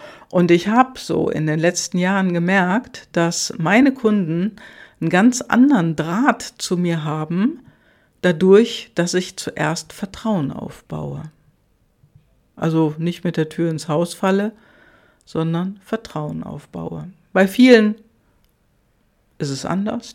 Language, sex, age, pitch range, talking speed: German, female, 60-79, 170-205 Hz, 120 wpm